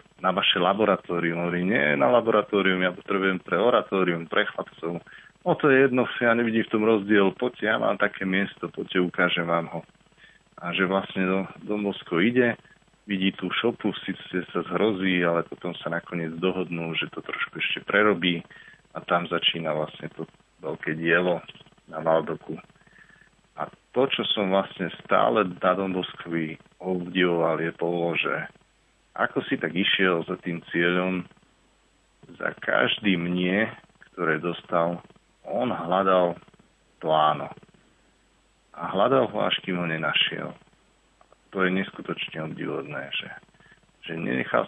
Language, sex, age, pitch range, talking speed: Slovak, male, 40-59, 85-100 Hz, 135 wpm